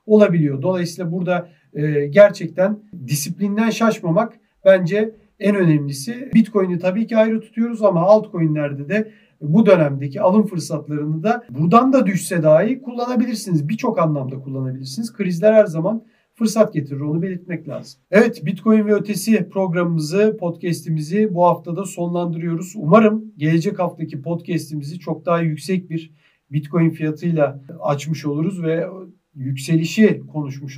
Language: Turkish